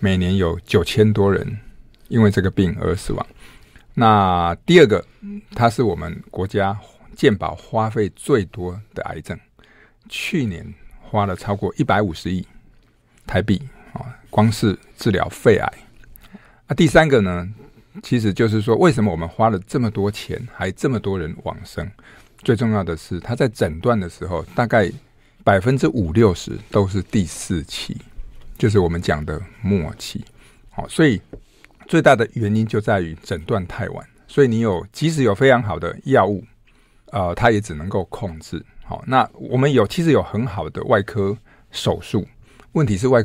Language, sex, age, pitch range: Chinese, male, 50-69, 90-115 Hz